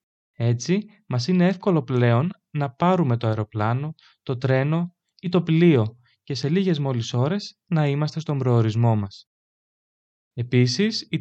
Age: 20-39